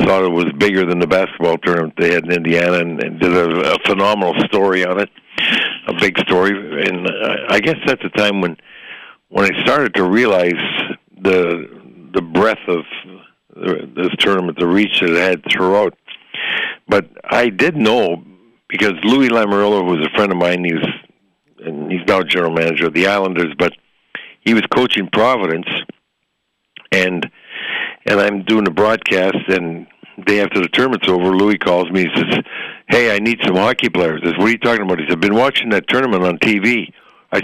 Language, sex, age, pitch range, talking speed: English, male, 60-79, 90-105 Hz, 190 wpm